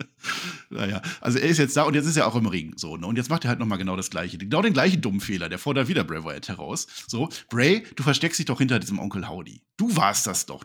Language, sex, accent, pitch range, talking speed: German, male, German, 95-140 Hz, 275 wpm